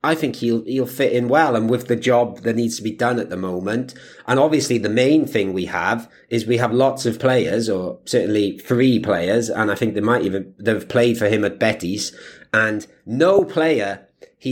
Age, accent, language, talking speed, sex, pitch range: 30-49, British, English, 215 wpm, male, 105-120 Hz